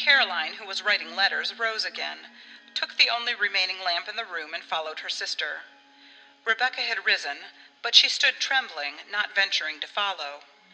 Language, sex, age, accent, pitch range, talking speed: English, female, 40-59, American, 165-265 Hz, 170 wpm